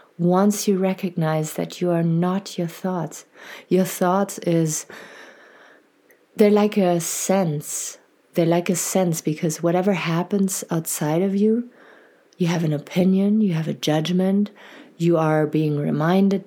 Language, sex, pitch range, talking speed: English, female, 165-195 Hz, 140 wpm